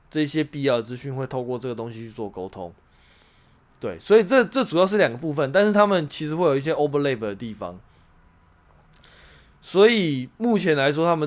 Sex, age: male, 20-39